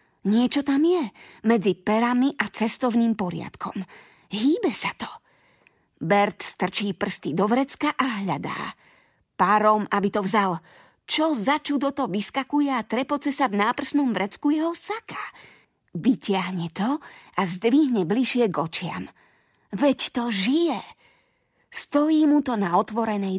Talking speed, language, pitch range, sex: 125 wpm, Slovak, 190-260 Hz, female